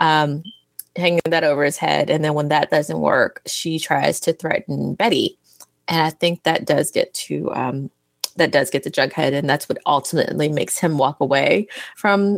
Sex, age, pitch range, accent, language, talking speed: female, 20-39, 150-185 Hz, American, English, 190 wpm